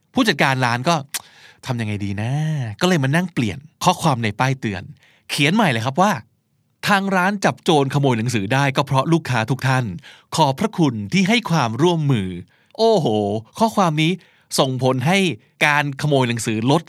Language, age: Thai, 20-39